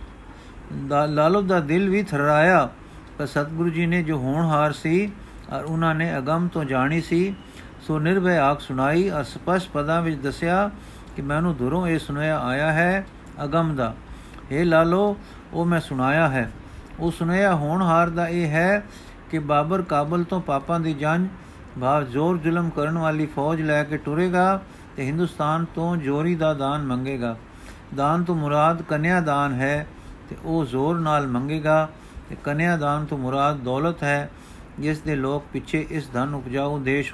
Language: Punjabi